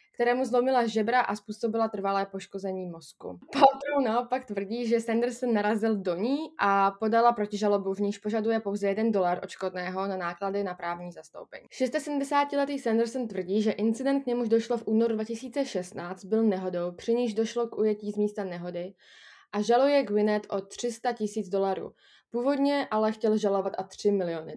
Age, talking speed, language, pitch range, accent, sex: 20-39, 160 wpm, Czech, 195-230 Hz, native, female